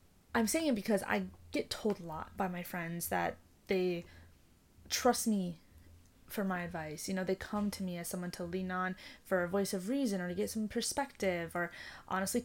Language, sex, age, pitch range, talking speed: English, female, 20-39, 175-235 Hz, 205 wpm